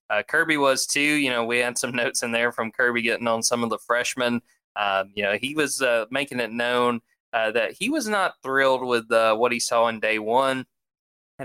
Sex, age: male, 20-39